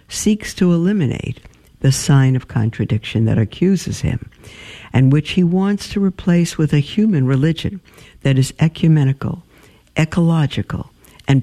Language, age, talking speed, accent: English, 60-79, 130 wpm, American